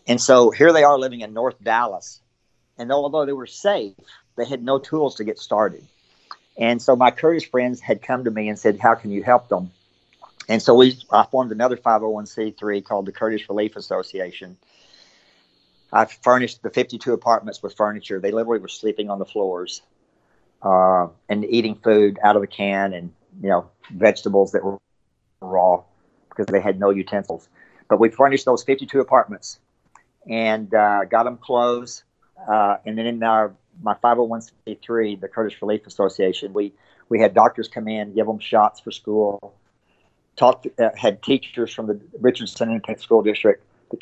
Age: 50-69